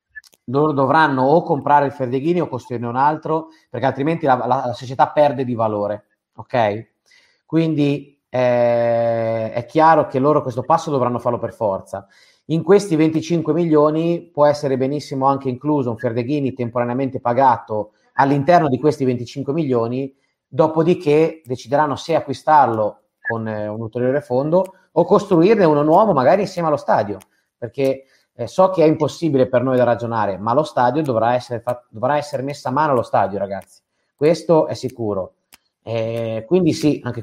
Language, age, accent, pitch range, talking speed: Italian, 30-49, native, 120-155 Hz, 155 wpm